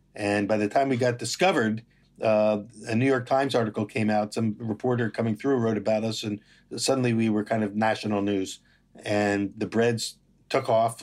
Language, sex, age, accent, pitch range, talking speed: English, male, 50-69, American, 105-125 Hz, 190 wpm